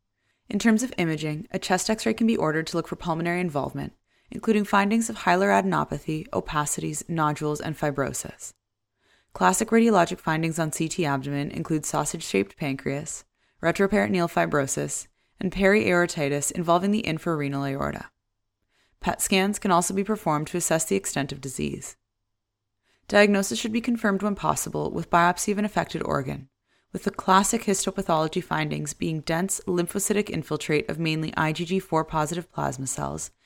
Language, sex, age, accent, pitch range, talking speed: English, female, 20-39, American, 145-195 Hz, 140 wpm